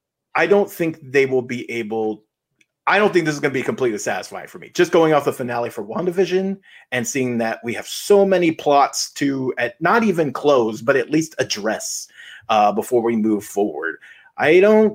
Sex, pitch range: male, 120-170 Hz